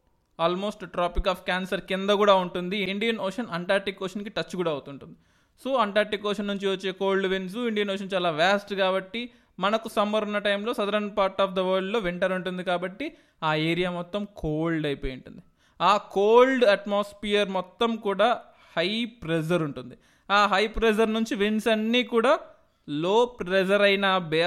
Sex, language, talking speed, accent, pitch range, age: male, Telugu, 155 wpm, native, 180-225 Hz, 20-39